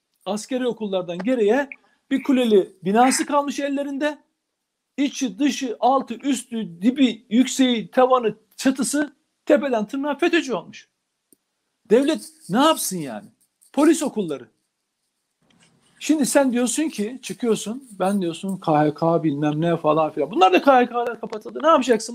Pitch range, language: 185-240 Hz, Turkish